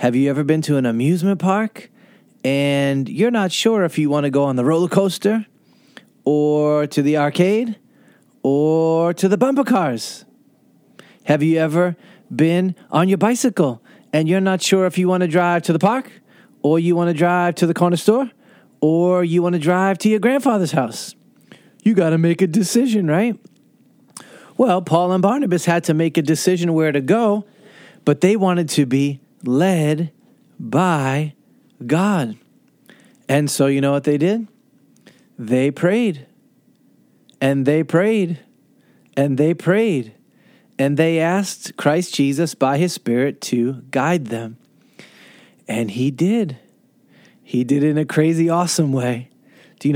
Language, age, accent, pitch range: English, 30-49, American, 145-195 Hz